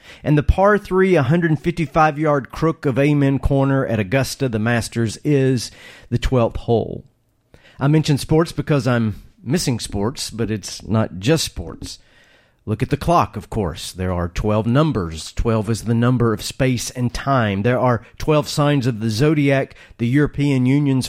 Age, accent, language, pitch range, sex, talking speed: 40-59, American, English, 115-140 Hz, male, 165 wpm